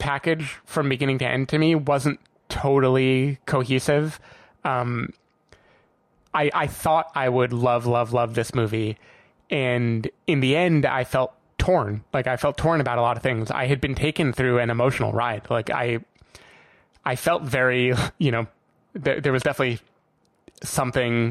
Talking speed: 160 wpm